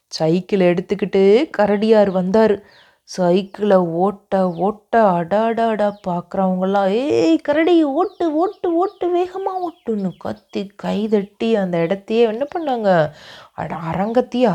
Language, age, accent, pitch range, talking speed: Tamil, 30-49, native, 175-230 Hz, 95 wpm